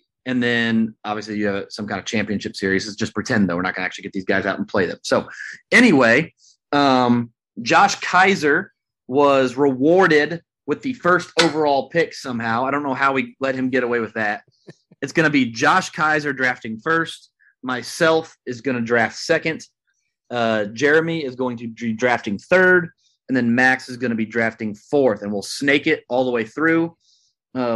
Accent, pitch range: American, 115-150 Hz